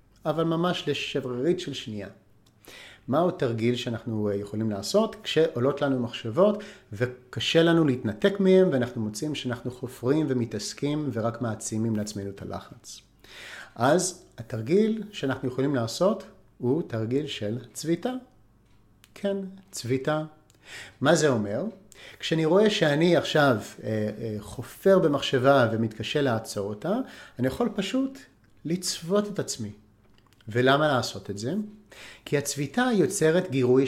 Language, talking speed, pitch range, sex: Hebrew, 115 wpm, 110-180 Hz, male